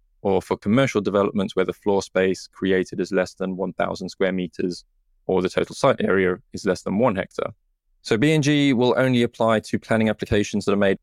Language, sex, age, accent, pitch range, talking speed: English, male, 20-39, British, 95-105 Hz, 195 wpm